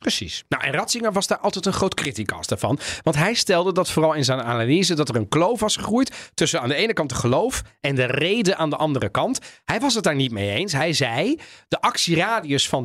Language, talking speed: Dutch, 240 wpm